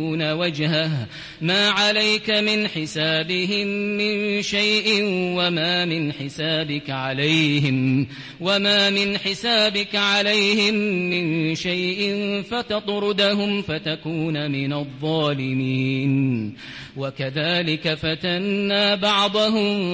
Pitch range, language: 155-205 Hz, English